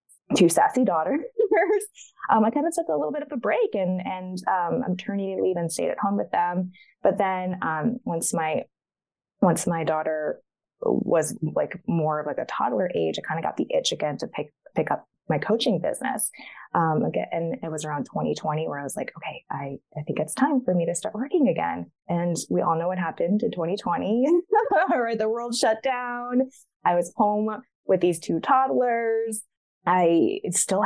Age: 20-39